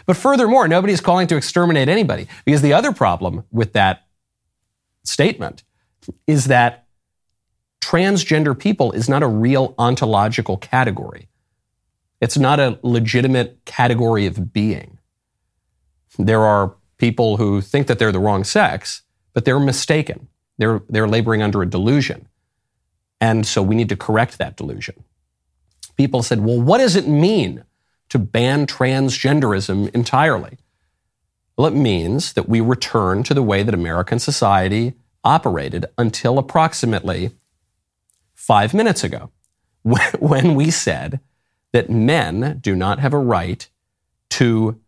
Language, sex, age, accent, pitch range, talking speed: English, male, 40-59, American, 100-135 Hz, 130 wpm